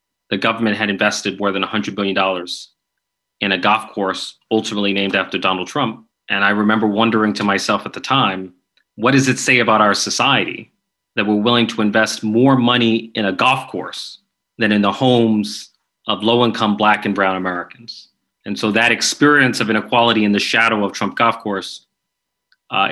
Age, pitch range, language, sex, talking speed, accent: 30-49, 100-115 Hz, English, male, 185 wpm, American